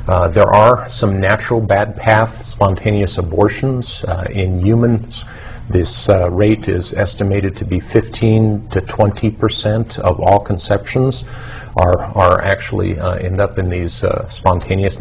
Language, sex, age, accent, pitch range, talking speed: English, male, 50-69, American, 95-110 Hz, 140 wpm